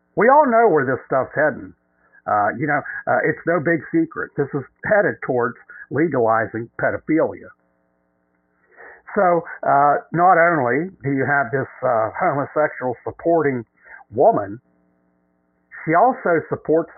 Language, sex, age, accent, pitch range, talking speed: English, male, 60-79, American, 125-170 Hz, 125 wpm